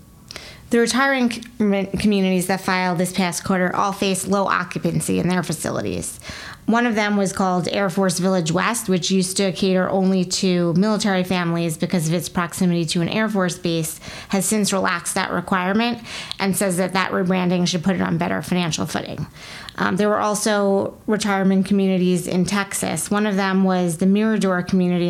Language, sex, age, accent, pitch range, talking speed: English, female, 30-49, American, 175-195 Hz, 175 wpm